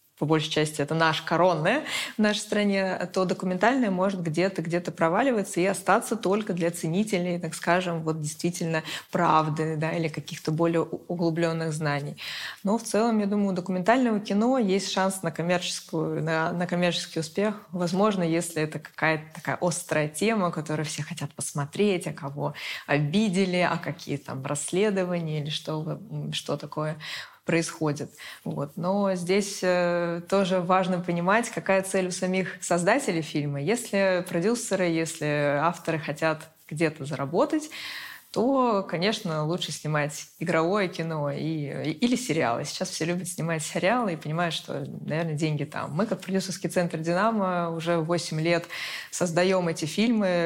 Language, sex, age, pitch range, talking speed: Russian, female, 20-39, 160-190 Hz, 140 wpm